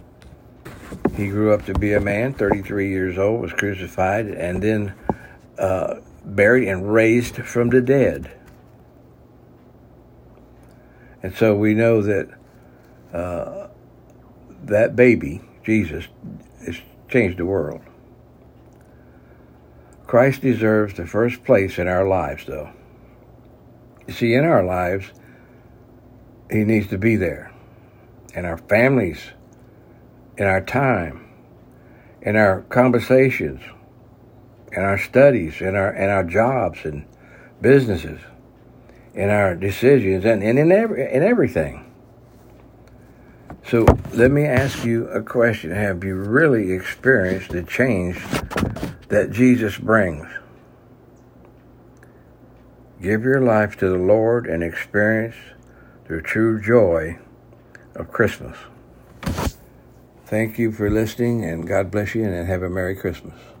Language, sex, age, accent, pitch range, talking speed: English, male, 60-79, American, 95-120 Hz, 115 wpm